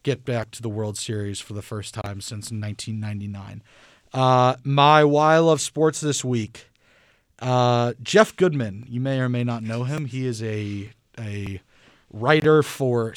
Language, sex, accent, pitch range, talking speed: English, male, American, 115-140 Hz, 165 wpm